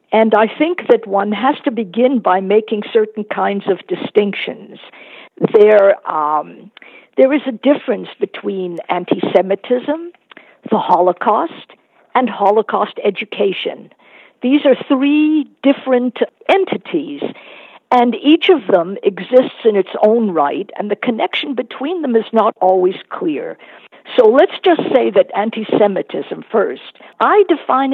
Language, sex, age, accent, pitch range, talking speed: English, female, 50-69, American, 205-290 Hz, 125 wpm